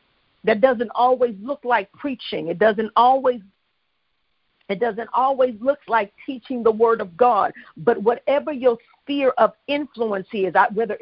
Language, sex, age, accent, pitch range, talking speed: English, female, 50-69, American, 225-275 Hz, 145 wpm